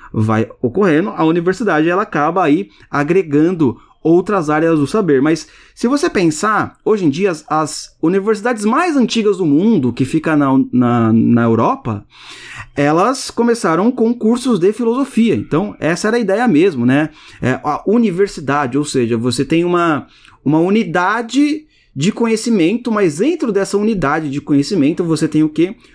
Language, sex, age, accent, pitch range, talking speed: Portuguese, male, 30-49, Brazilian, 140-210 Hz, 155 wpm